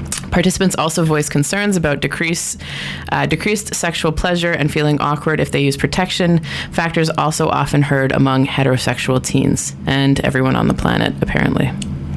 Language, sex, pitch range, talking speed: English, female, 135-165 Hz, 145 wpm